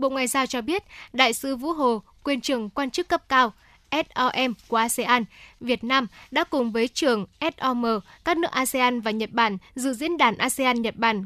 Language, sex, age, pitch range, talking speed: Vietnamese, female, 10-29, 235-285 Hz, 190 wpm